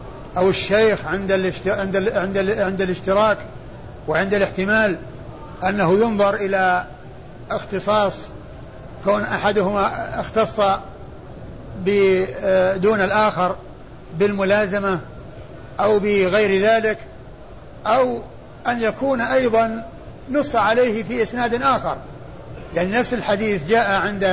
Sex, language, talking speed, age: male, Arabic, 80 wpm, 60-79